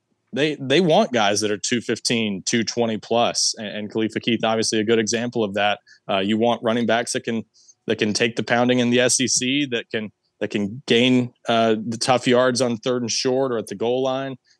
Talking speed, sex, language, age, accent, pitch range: 215 wpm, male, English, 20-39, American, 110-125 Hz